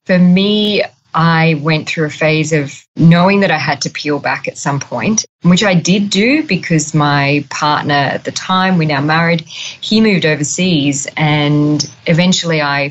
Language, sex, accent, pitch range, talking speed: English, female, Australian, 145-170 Hz, 170 wpm